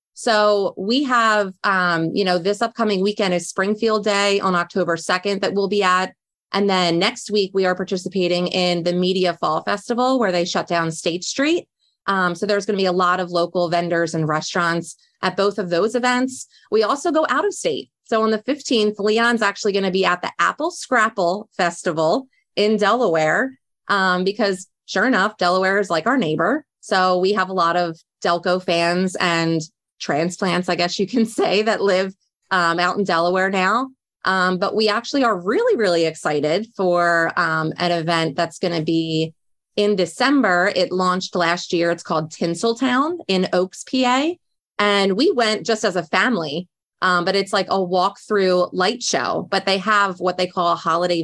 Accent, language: American, English